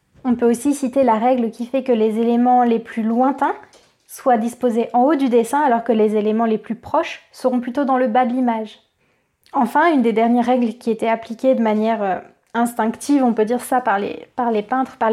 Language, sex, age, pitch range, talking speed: French, female, 20-39, 230-270 Hz, 215 wpm